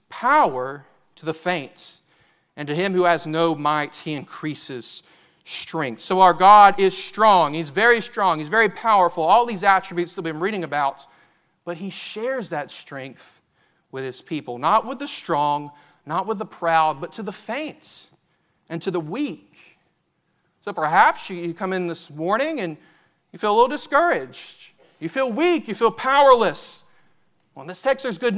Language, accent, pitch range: English, American, 165-215 Hz